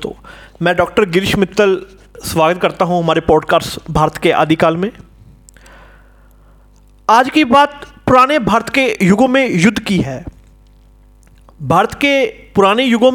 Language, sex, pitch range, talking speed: Hindi, male, 175-270 Hz, 130 wpm